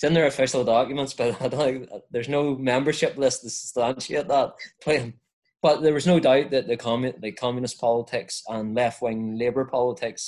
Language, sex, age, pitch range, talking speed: English, male, 20-39, 110-125 Hz, 180 wpm